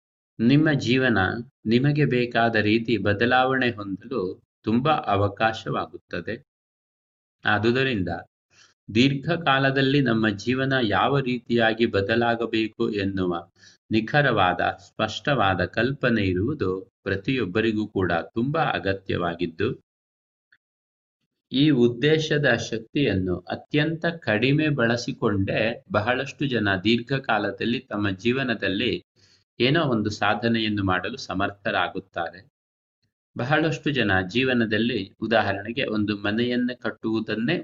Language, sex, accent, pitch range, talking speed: Kannada, male, native, 100-125 Hz, 75 wpm